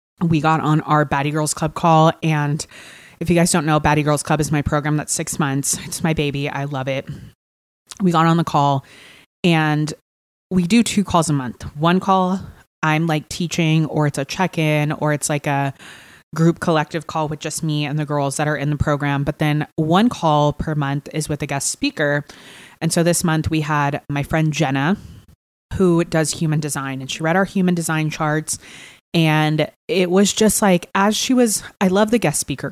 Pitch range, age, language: 150-180 Hz, 20-39, English